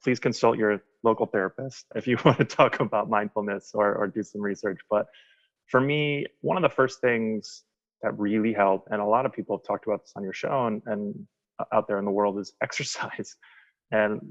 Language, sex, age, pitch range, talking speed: English, male, 20-39, 100-115 Hz, 210 wpm